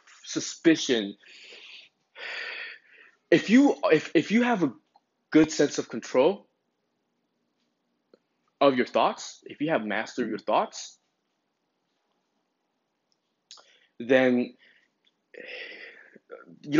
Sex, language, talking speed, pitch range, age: male, English, 80 wpm, 105-125 Hz, 20-39